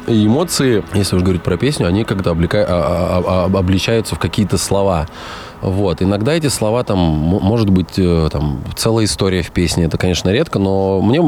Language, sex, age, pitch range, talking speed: Russian, male, 20-39, 90-115 Hz, 165 wpm